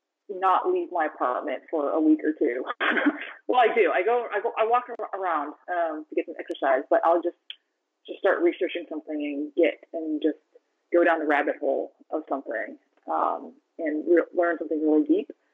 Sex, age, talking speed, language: female, 30-49, 190 wpm, English